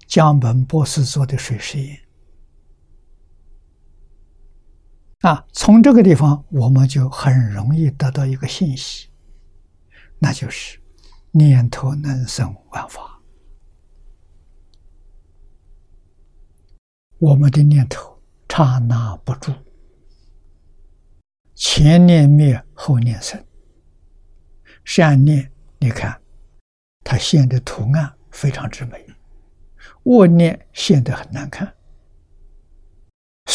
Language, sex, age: Chinese, male, 60-79